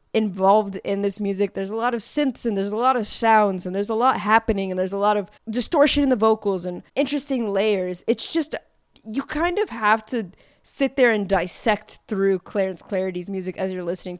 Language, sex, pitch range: English, female, 190-240 Hz